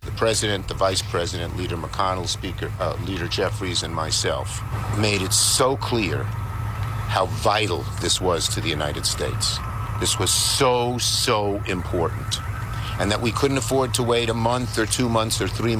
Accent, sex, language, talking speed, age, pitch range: American, male, English, 165 wpm, 50-69, 100-115 Hz